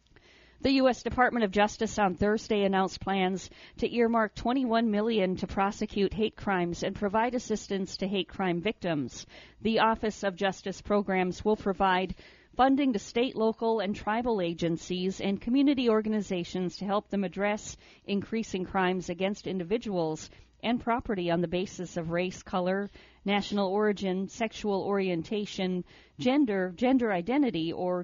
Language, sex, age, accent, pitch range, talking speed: English, female, 40-59, American, 180-220 Hz, 140 wpm